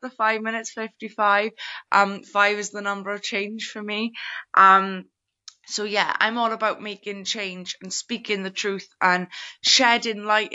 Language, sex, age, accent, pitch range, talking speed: English, female, 20-39, British, 195-220 Hz, 160 wpm